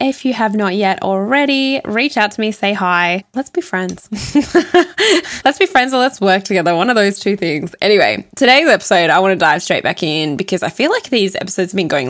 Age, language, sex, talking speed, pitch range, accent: 10-29, English, female, 230 wpm, 170-220 Hz, Australian